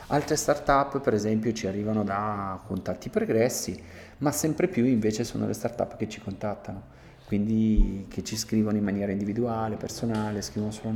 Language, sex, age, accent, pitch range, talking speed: Italian, male, 30-49, native, 105-120 Hz, 160 wpm